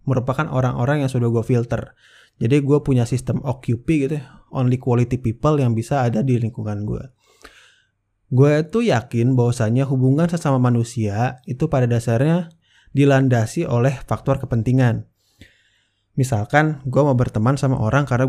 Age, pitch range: 20-39, 115-140 Hz